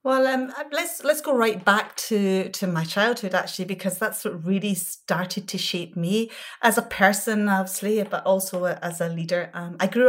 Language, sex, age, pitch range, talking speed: English, female, 40-59, 180-210 Hz, 190 wpm